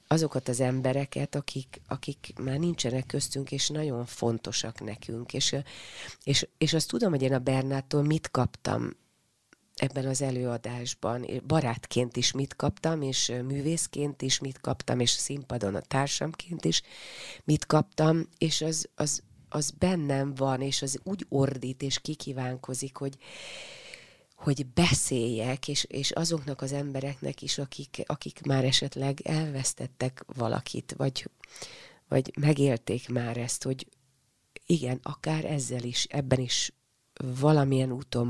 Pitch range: 125-145 Hz